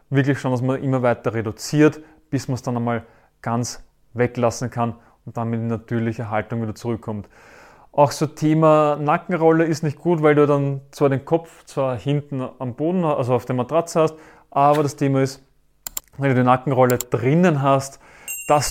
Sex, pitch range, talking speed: male, 130-155 Hz, 175 wpm